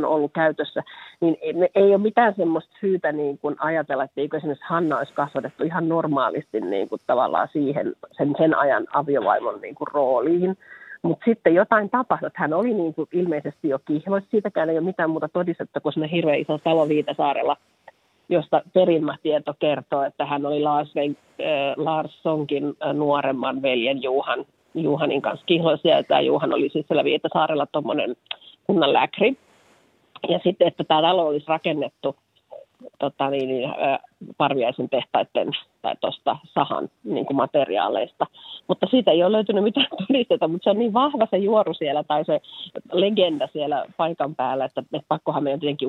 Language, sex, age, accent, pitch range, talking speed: Finnish, female, 40-59, native, 145-185 Hz, 160 wpm